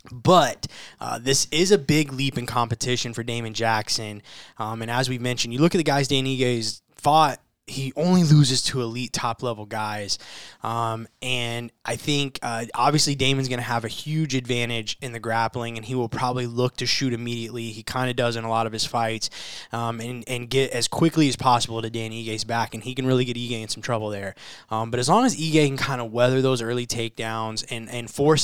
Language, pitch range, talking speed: English, 115-135 Hz, 220 wpm